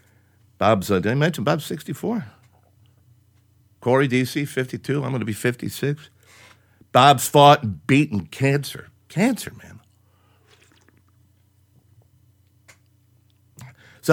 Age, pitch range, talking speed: 60-79, 105-130 Hz, 100 wpm